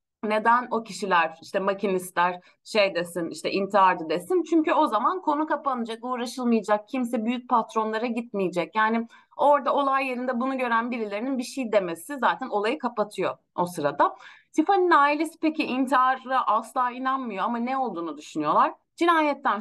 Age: 30-49